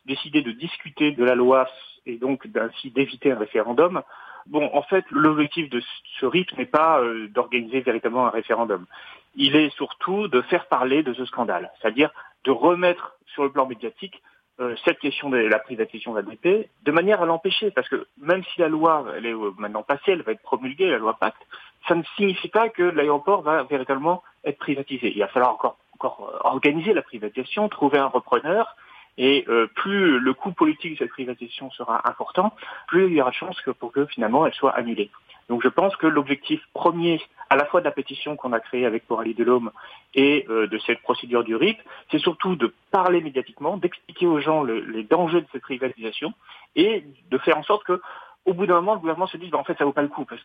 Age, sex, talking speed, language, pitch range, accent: 40-59, male, 210 wpm, French, 125-170 Hz, French